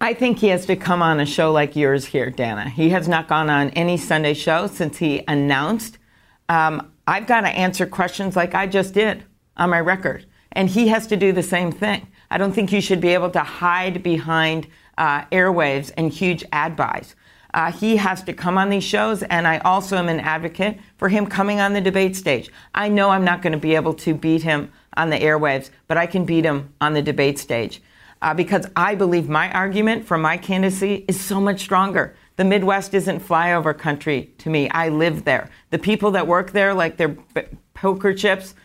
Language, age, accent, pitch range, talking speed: English, 50-69, American, 160-195 Hz, 215 wpm